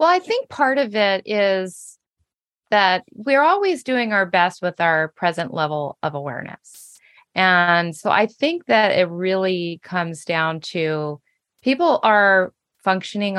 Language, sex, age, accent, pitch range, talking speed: English, female, 30-49, American, 160-195 Hz, 145 wpm